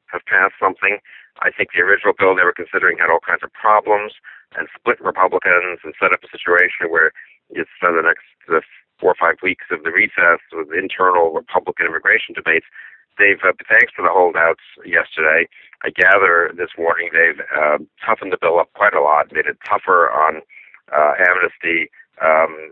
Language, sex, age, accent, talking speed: English, male, 50-69, American, 180 wpm